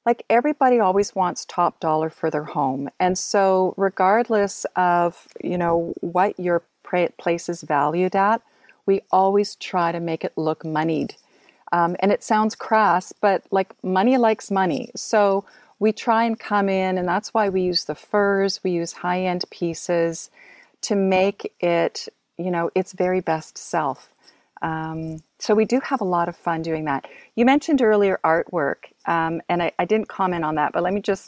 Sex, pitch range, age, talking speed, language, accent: female, 165-195 Hz, 40-59, 175 wpm, English, American